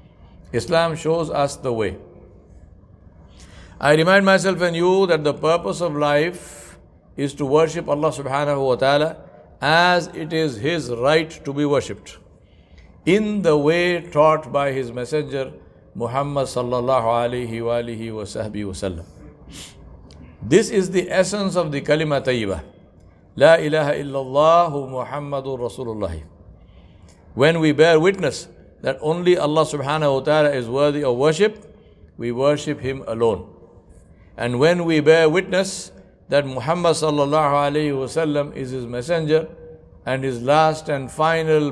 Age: 60-79